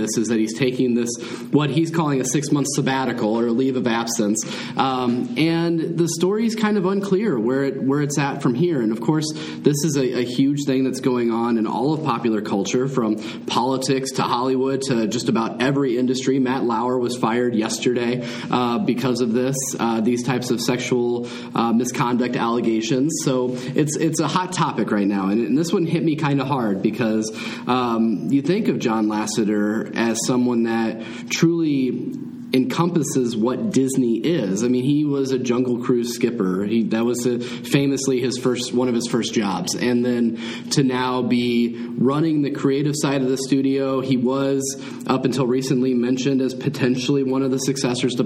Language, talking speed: English, 190 wpm